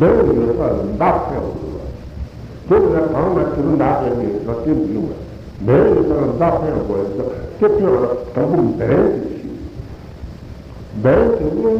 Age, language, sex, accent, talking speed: 60-79, Italian, male, American, 75 wpm